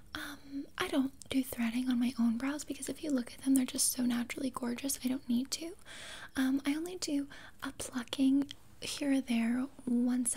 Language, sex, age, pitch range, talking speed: English, female, 10-29, 255-290 Hz, 190 wpm